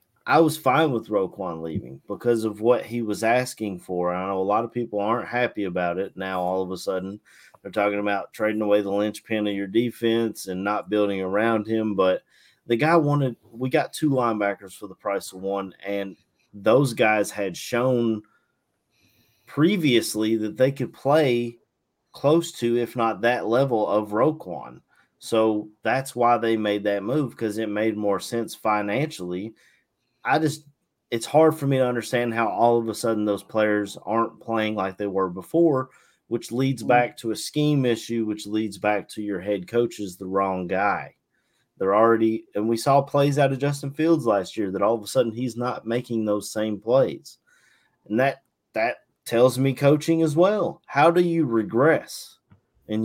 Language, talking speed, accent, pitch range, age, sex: English, 185 wpm, American, 100-125 Hz, 30-49, male